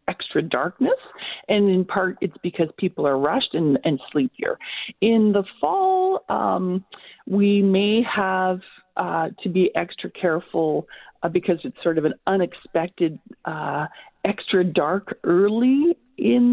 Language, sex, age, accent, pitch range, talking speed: English, female, 40-59, American, 165-240 Hz, 135 wpm